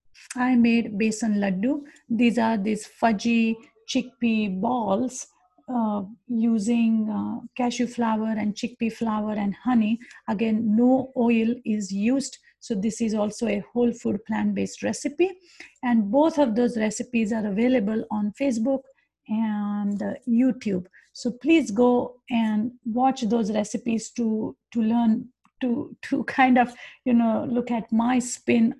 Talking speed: 140 wpm